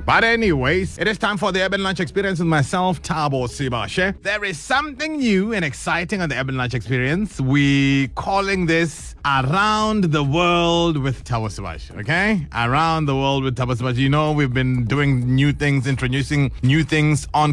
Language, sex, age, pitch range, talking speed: English, male, 30-49, 125-165 Hz, 180 wpm